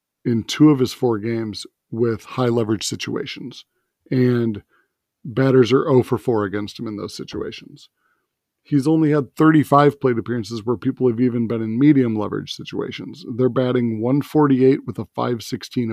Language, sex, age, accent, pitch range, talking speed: English, male, 40-59, American, 110-135 Hz, 160 wpm